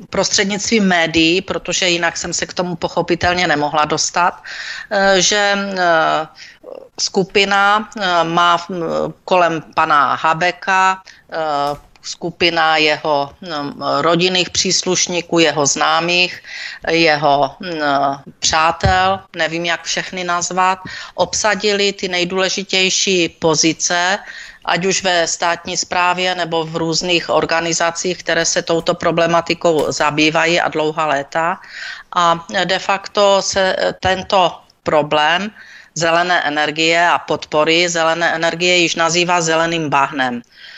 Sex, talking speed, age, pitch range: female, 95 wpm, 40-59, 160-185 Hz